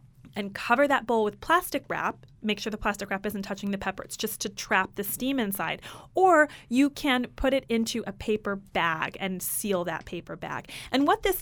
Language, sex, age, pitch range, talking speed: English, female, 30-49, 190-250 Hz, 210 wpm